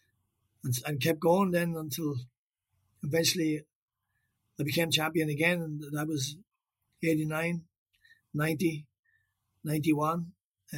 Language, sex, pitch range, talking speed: English, male, 140-170 Hz, 95 wpm